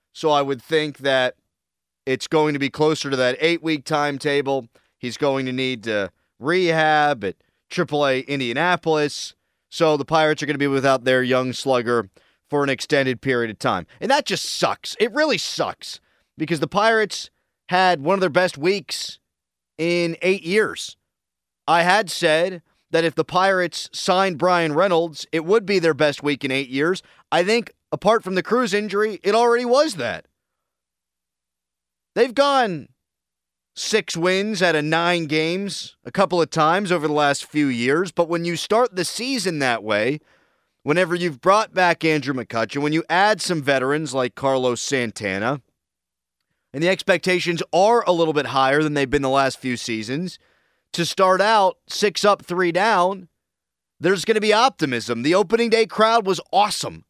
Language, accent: English, American